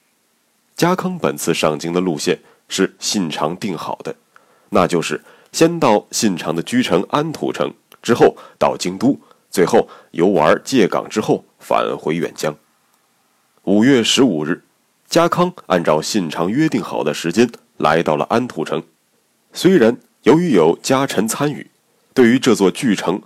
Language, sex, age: Chinese, male, 30-49